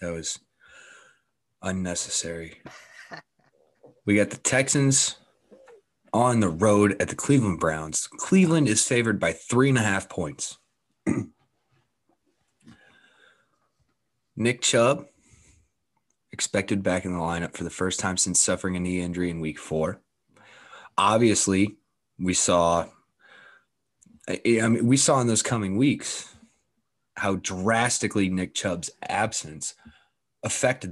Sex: male